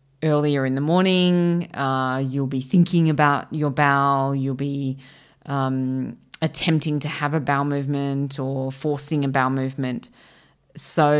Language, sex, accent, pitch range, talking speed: English, female, Australian, 135-170 Hz, 140 wpm